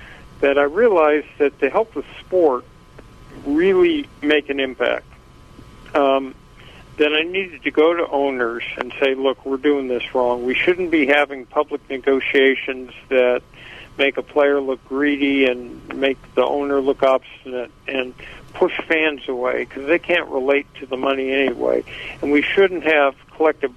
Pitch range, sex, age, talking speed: 130-150 Hz, male, 50-69, 155 wpm